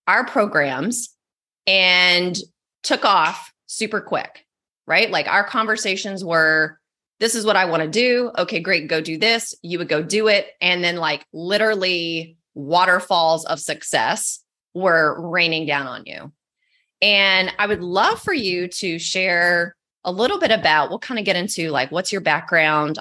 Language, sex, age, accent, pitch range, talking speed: English, female, 20-39, American, 165-215 Hz, 160 wpm